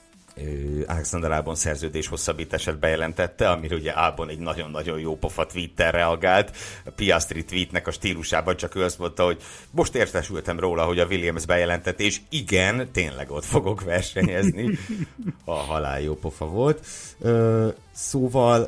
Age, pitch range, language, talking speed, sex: 60-79, 80-95 Hz, Hungarian, 135 wpm, male